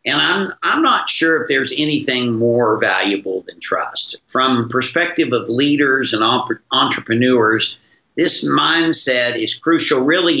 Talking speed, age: 140 wpm, 50-69